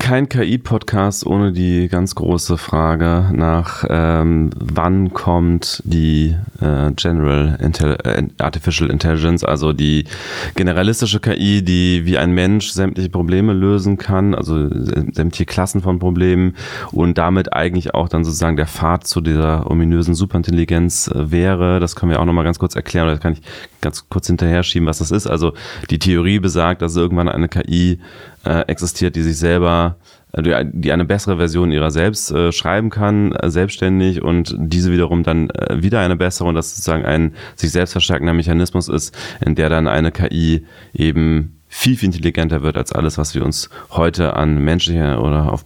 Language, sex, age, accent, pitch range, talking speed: German, male, 30-49, German, 80-95 Hz, 165 wpm